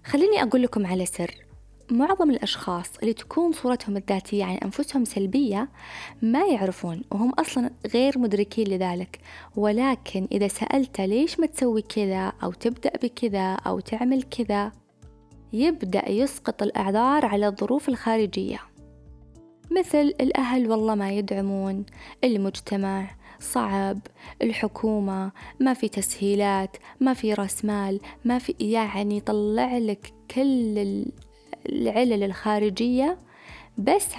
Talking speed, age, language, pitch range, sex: 110 wpm, 20-39, Arabic, 200-255 Hz, female